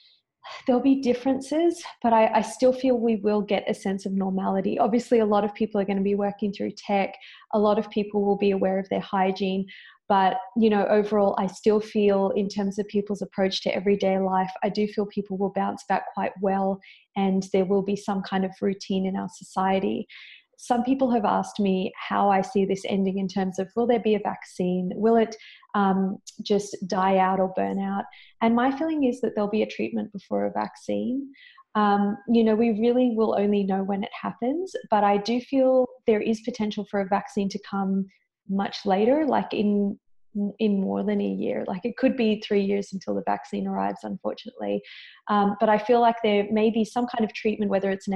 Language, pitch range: English, 195-225 Hz